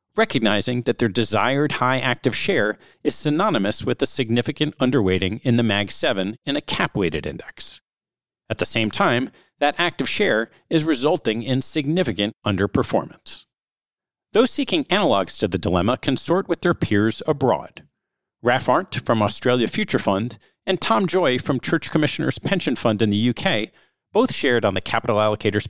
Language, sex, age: English, male, 40-59